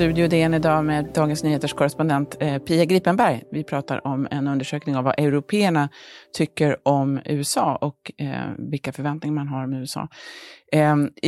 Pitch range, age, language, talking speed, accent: 140-170 Hz, 30-49, Swedish, 155 wpm, native